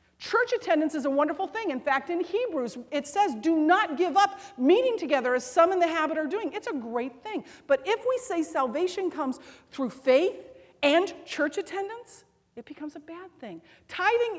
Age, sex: 40-59, female